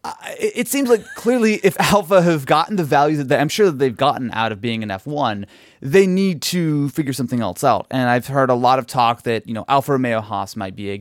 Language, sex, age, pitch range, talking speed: English, male, 30-49, 110-140 Hz, 250 wpm